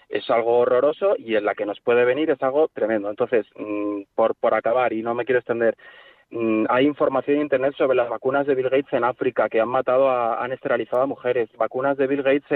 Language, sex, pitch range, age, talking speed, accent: Spanish, male, 115-140 Hz, 20-39, 220 wpm, Spanish